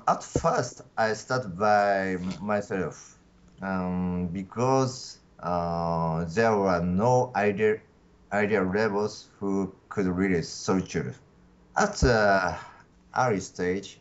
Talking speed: 105 wpm